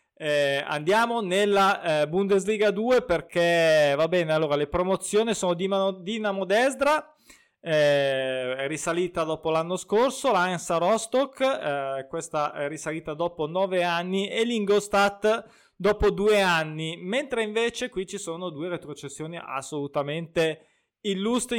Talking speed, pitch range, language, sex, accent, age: 125 wpm, 160-205 Hz, Italian, male, native, 20-39